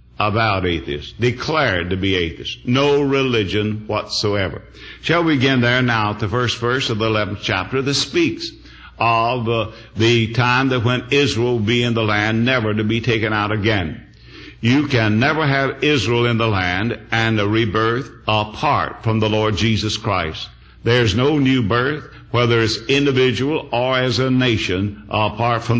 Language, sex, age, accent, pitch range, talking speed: English, male, 60-79, American, 110-130 Hz, 165 wpm